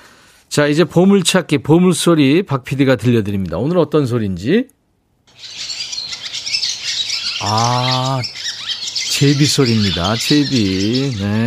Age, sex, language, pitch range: 50-69, male, Korean, 105-150 Hz